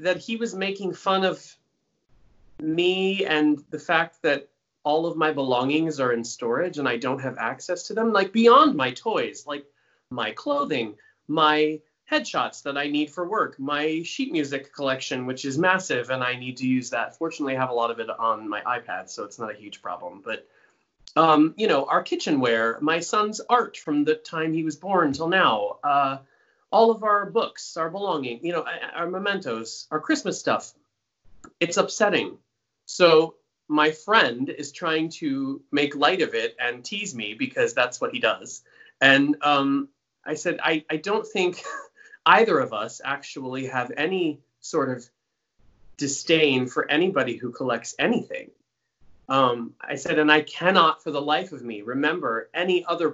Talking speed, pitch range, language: 170 wpm, 140-195 Hz, English